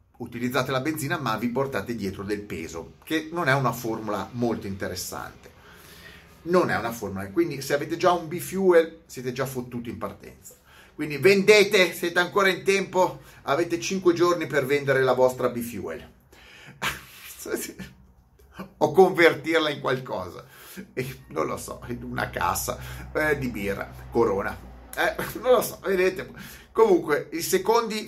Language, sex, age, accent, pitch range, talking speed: Italian, male, 30-49, native, 120-180 Hz, 140 wpm